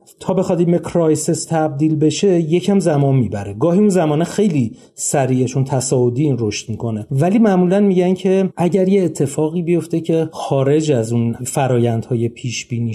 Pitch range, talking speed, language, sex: 120-165 Hz, 145 wpm, Persian, male